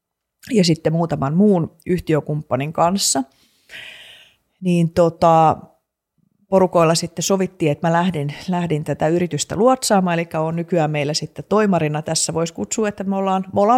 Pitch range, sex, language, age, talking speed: 150-190 Hz, female, Finnish, 30-49, 140 wpm